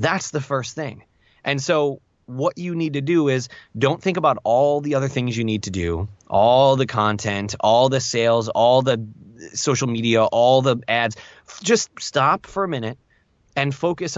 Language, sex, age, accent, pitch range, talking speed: English, male, 20-39, American, 115-145 Hz, 180 wpm